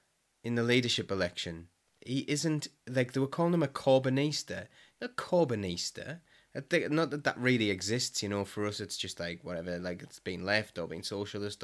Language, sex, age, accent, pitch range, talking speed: English, male, 20-39, British, 100-135 Hz, 185 wpm